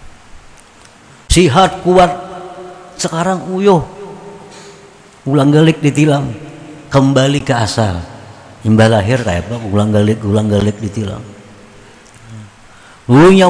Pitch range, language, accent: 85-125 Hz, Indonesian, native